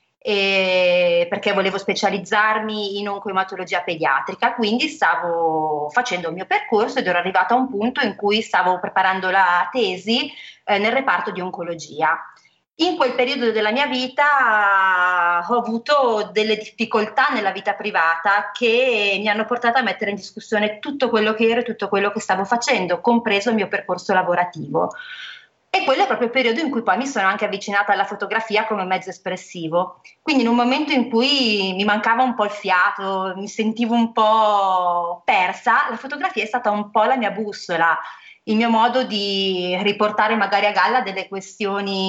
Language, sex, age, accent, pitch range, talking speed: Italian, female, 30-49, native, 190-240 Hz, 170 wpm